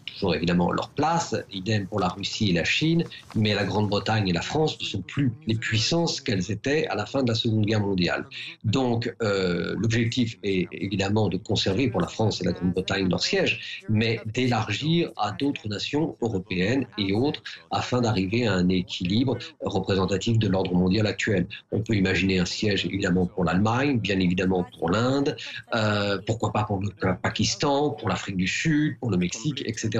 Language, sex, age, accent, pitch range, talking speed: French, male, 50-69, French, 100-120 Hz, 185 wpm